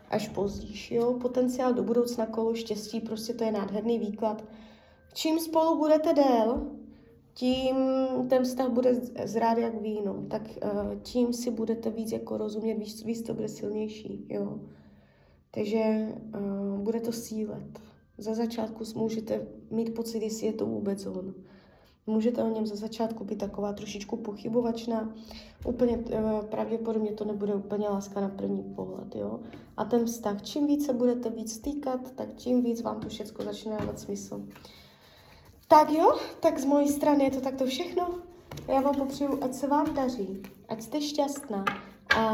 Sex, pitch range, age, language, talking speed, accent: female, 210-255 Hz, 20-39, Czech, 155 wpm, native